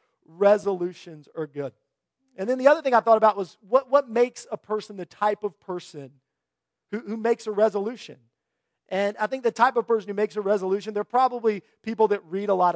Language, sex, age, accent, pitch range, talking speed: English, male, 40-59, American, 175-215 Hz, 205 wpm